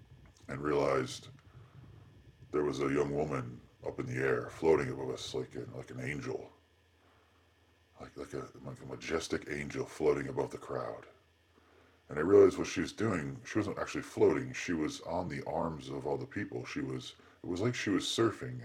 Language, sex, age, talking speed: English, female, 40-59, 185 wpm